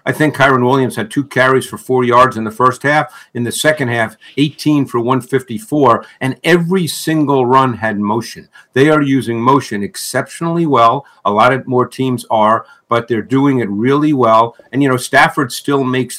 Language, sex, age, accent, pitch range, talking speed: English, male, 50-69, American, 125-150 Hz, 190 wpm